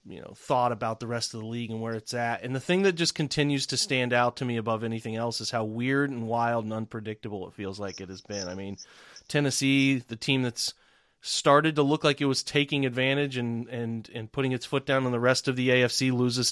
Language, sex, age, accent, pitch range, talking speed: English, male, 30-49, American, 115-140 Hz, 245 wpm